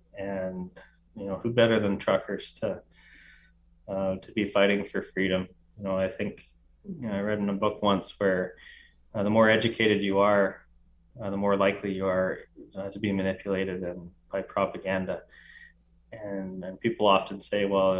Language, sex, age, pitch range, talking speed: English, male, 20-39, 95-105 Hz, 175 wpm